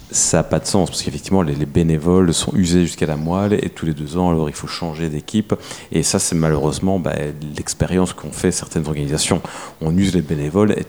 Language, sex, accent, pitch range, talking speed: French, male, French, 80-105 Hz, 215 wpm